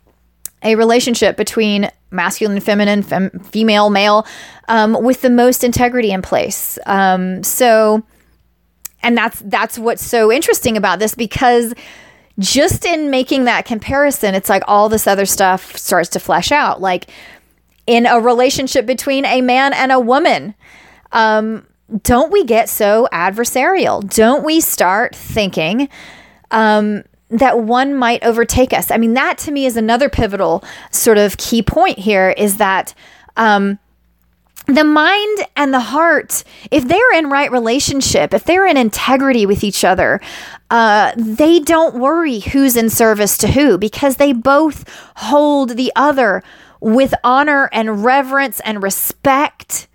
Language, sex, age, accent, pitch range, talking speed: English, female, 30-49, American, 210-275 Hz, 145 wpm